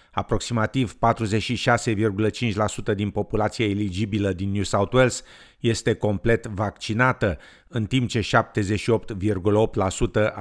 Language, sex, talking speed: Romanian, male, 90 wpm